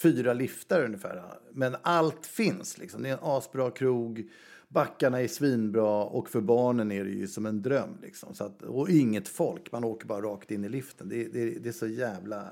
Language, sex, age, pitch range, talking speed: Swedish, male, 60-79, 110-155 Hz, 205 wpm